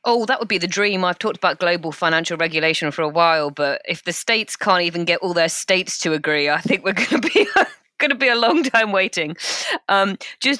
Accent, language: British, English